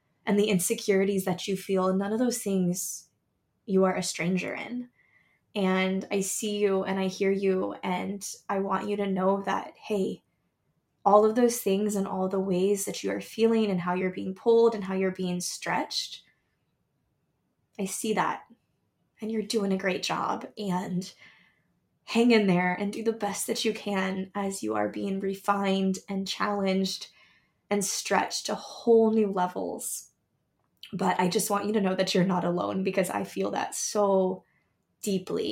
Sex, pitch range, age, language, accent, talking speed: female, 185-210 Hz, 10-29, English, American, 175 wpm